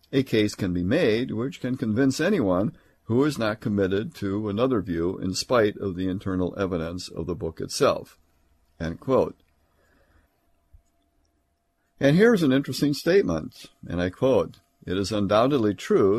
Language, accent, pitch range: English, American, 90-115 Hz